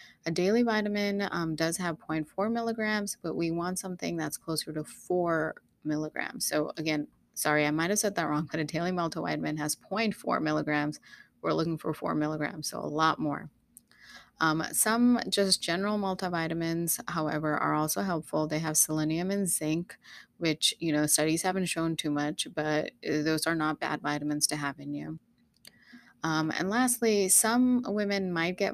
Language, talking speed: English, 165 wpm